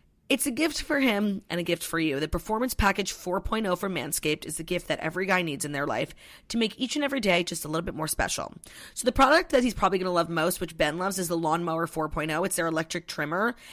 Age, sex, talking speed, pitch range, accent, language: 30-49, female, 260 wpm, 170-220 Hz, American, English